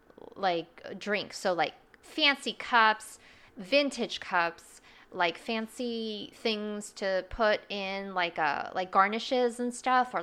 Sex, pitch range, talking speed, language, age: female, 185-240 Hz, 125 wpm, English, 20-39